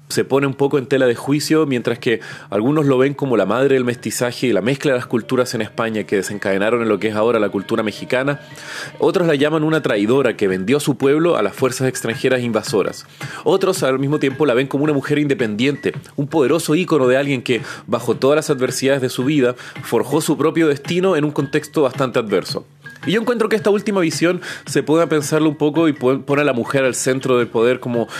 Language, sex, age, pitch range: Spanish, male, 30-49, 125-150 Hz